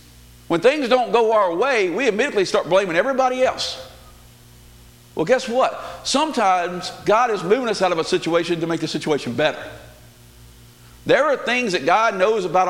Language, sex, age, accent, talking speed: English, male, 50-69, American, 170 wpm